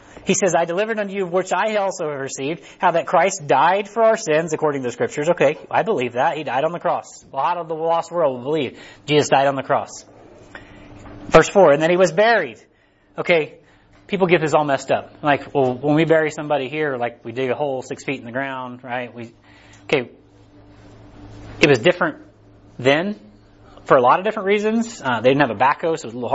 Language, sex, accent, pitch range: English, male, American, 125-165 Hz